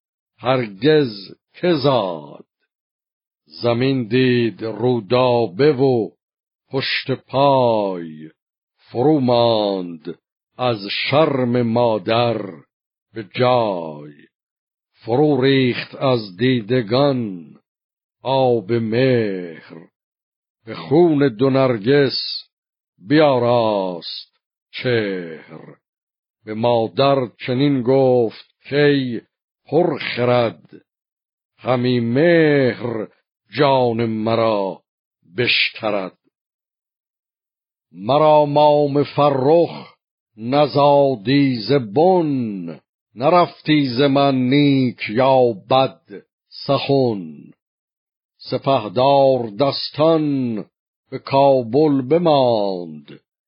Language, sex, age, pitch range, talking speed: Persian, male, 50-69, 115-140 Hz, 55 wpm